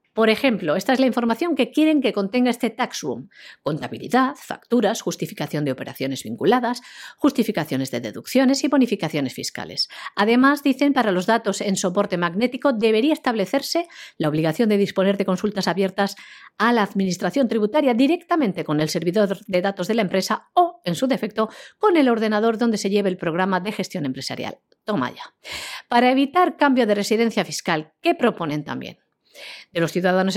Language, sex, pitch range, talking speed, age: Spanish, female, 180-260 Hz, 165 wpm, 50-69